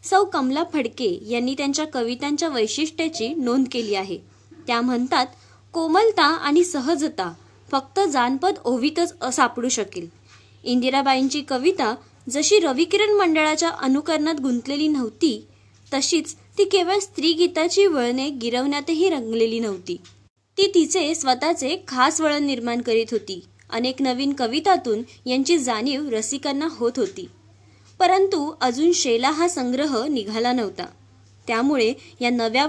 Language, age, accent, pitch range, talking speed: Marathi, 20-39, native, 235-315 Hz, 115 wpm